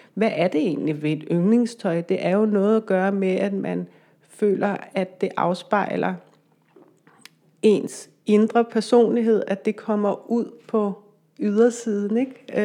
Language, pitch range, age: Danish, 190-220 Hz, 30-49